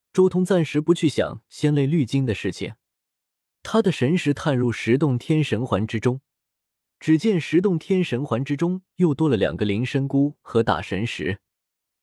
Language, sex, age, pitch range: Chinese, male, 20-39, 115-160 Hz